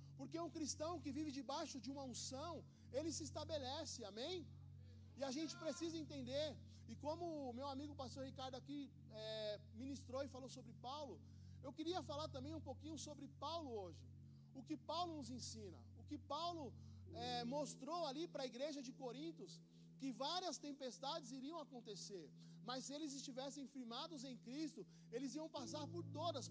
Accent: Brazilian